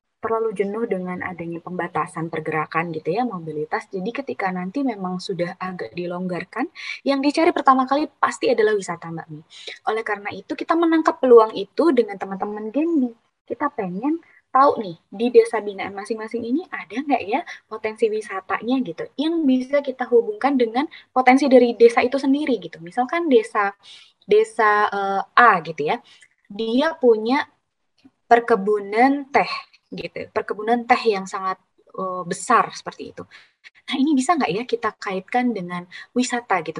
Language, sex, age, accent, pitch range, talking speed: Indonesian, female, 20-39, native, 190-260 Hz, 150 wpm